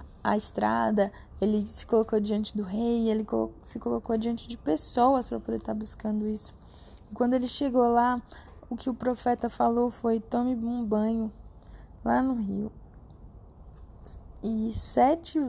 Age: 20-39